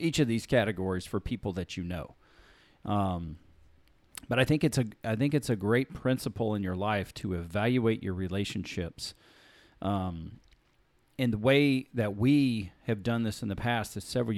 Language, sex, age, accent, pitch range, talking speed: English, male, 40-59, American, 100-125 Hz, 175 wpm